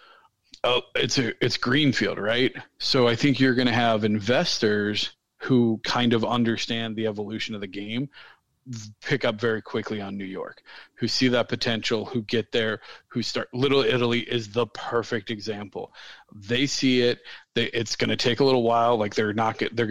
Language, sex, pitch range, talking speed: English, male, 105-120 Hz, 180 wpm